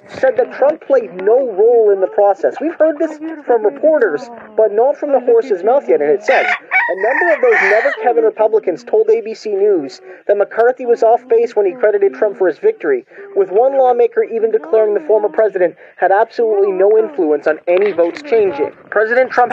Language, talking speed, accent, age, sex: English, 195 wpm, American, 30-49, male